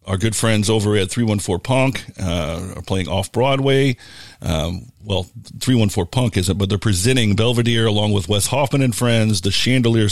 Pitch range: 100-125 Hz